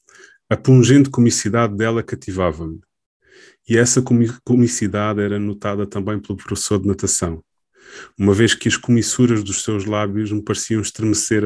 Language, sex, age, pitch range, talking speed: Portuguese, male, 20-39, 100-120 Hz, 135 wpm